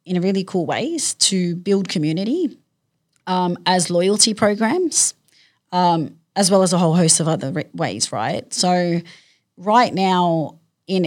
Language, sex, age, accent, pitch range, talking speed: English, female, 30-49, Australian, 170-200 Hz, 140 wpm